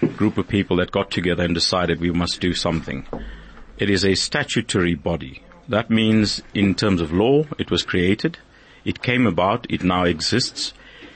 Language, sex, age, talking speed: English, male, 50-69, 170 wpm